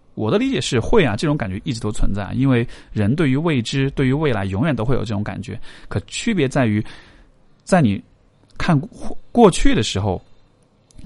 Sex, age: male, 20-39